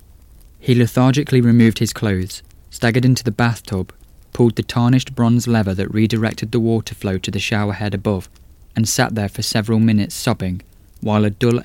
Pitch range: 95-115 Hz